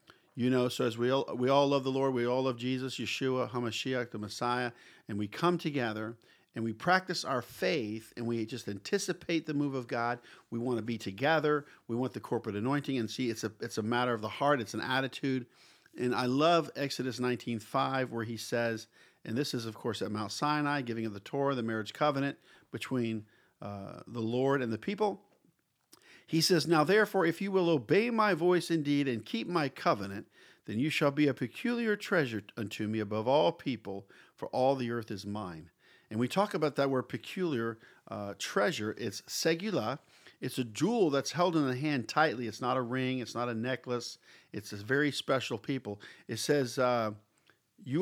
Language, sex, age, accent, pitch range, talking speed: English, male, 50-69, American, 115-145 Hz, 200 wpm